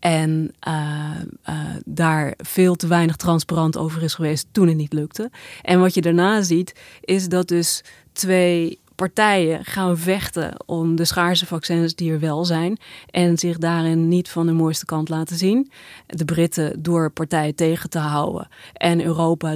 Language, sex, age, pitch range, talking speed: Dutch, female, 30-49, 165-190 Hz, 165 wpm